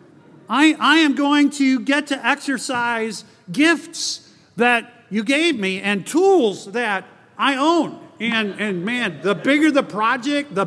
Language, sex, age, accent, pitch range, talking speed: English, male, 40-59, American, 175-255 Hz, 145 wpm